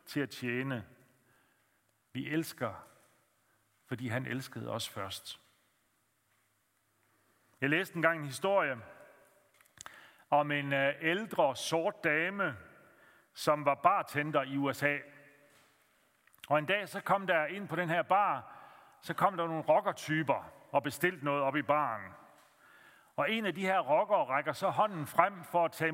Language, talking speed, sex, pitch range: Danish, 140 wpm, male, 125-160 Hz